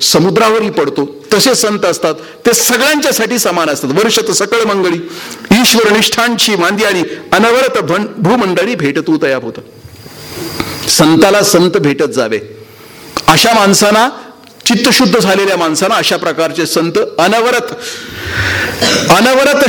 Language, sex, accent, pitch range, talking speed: English, male, Indian, 180-255 Hz, 110 wpm